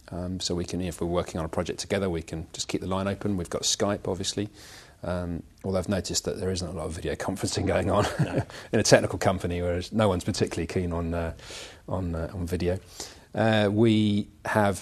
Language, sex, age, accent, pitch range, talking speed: English, male, 40-59, British, 85-105 Hz, 220 wpm